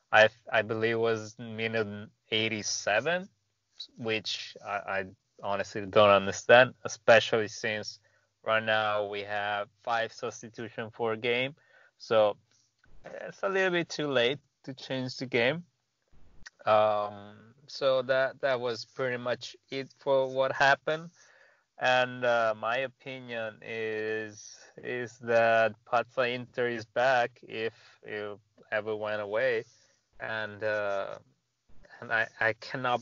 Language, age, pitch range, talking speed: English, 20-39, 105-125 Hz, 125 wpm